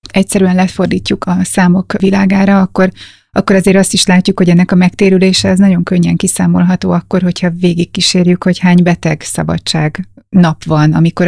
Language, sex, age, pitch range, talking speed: Hungarian, female, 30-49, 160-185 Hz, 155 wpm